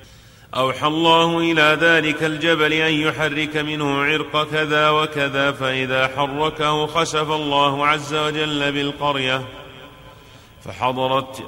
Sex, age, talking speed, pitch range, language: male, 40-59, 100 wpm, 135-155 Hz, Arabic